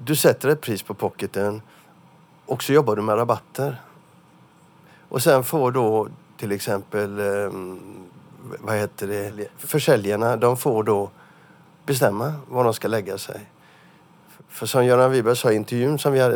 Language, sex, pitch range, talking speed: Swedish, male, 110-145 Hz, 145 wpm